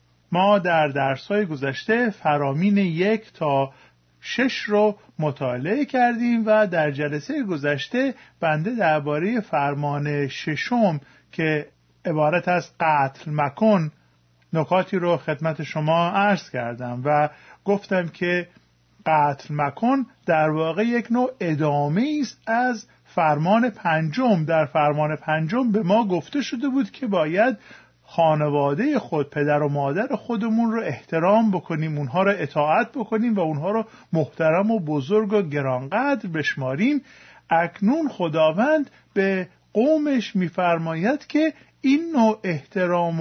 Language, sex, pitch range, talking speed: Persian, male, 155-220 Hz, 120 wpm